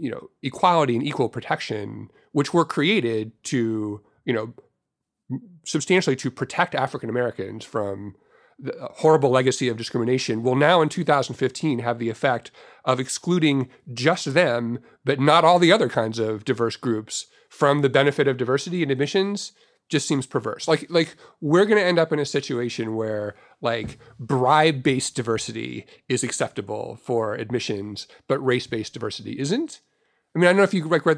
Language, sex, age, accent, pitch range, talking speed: English, male, 40-59, American, 120-170 Hz, 165 wpm